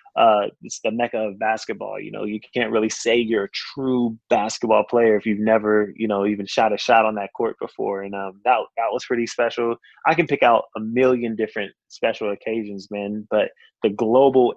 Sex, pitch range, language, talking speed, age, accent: male, 105-130 Hz, English, 205 wpm, 20-39, American